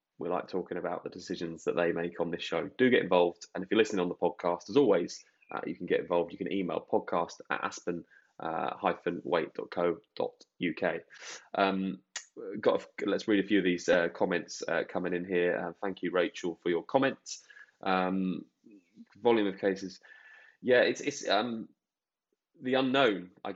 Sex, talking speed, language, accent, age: male, 170 wpm, English, British, 20-39